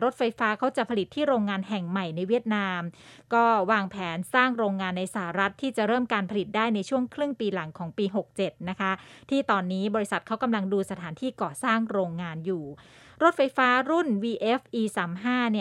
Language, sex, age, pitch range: English, female, 20-39, 190-230 Hz